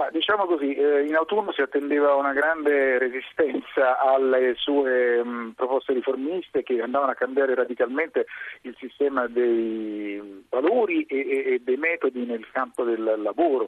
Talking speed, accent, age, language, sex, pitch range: 130 wpm, native, 40-59, Italian, male, 125-170 Hz